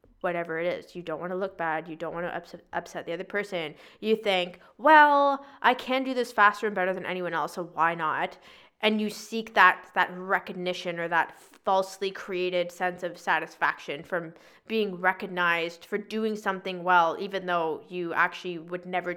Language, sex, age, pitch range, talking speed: English, female, 20-39, 175-215 Hz, 185 wpm